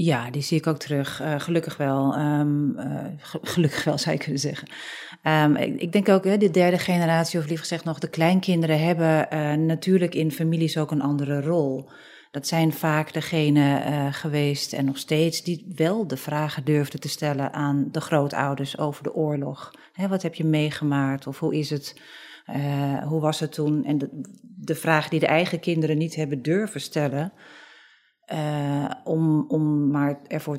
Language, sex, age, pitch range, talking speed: Dutch, female, 40-59, 145-165 Hz, 180 wpm